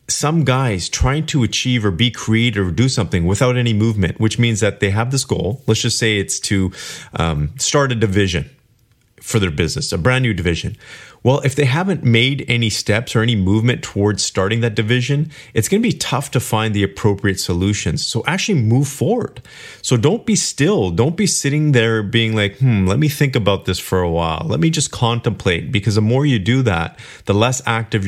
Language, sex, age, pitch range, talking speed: English, male, 30-49, 100-135 Hz, 205 wpm